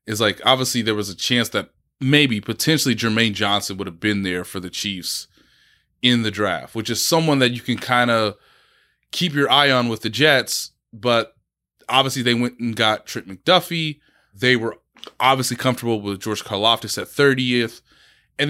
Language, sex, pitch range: English, male, 105-135 Hz